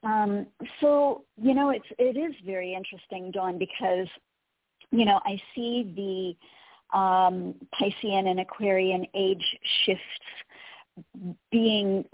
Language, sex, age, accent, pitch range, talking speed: English, female, 40-59, American, 175-200 Hz, 115 wpm